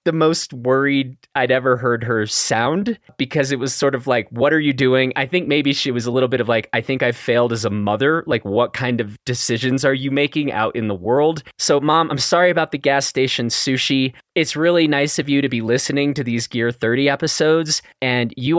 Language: English